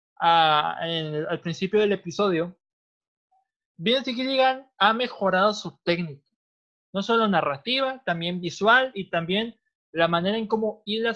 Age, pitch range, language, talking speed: 20-39, 165-220 Hz, Spanish, 130 wpm